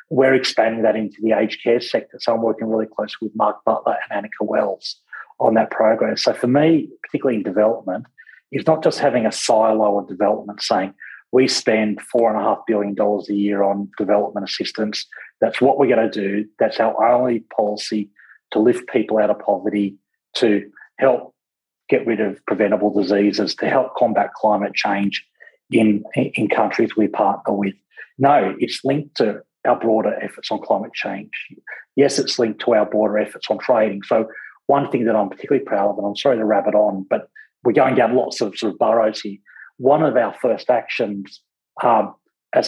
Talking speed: 185 wpm